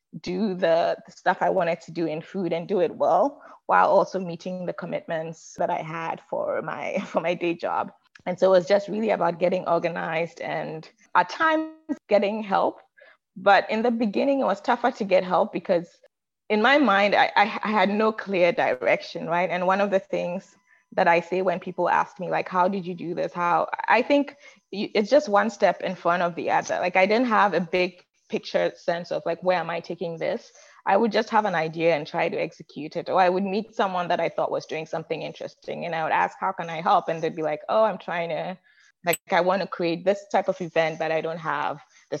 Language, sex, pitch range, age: English, female, 170-210 Hz, 20-39